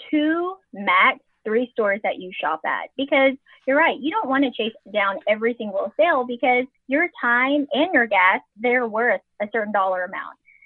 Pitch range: 205-285 Hz